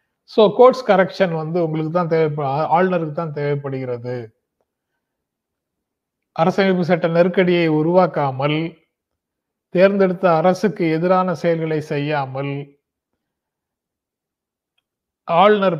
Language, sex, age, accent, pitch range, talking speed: Tamil, male, 30-49, native, 140-180 Hz, 75 wpm